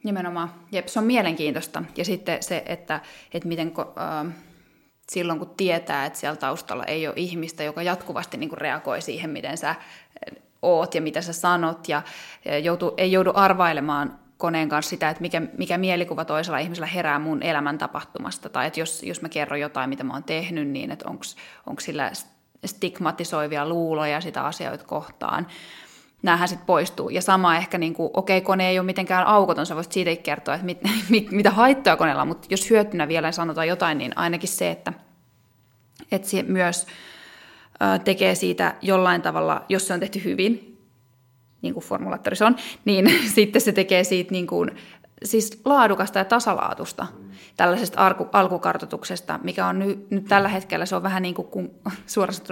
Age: 20-39